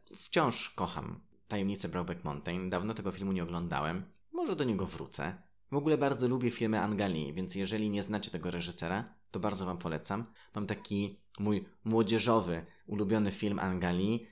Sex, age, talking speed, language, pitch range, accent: male, 20-39, 155 wpm, Polish, 90-115 Hz, native